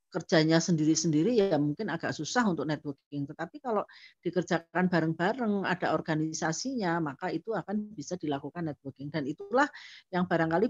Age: 40-59